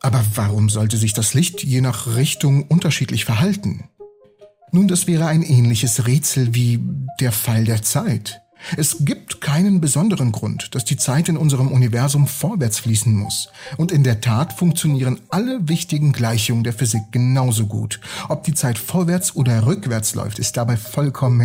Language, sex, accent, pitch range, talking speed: German, male, German, 115-160 Hz, 160 wpm